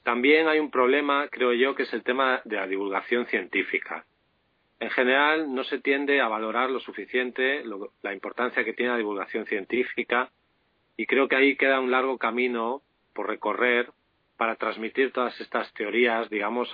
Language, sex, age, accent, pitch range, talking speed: Spanish, male, 40-59, Spanish, 115-140 Hz, 165 wpm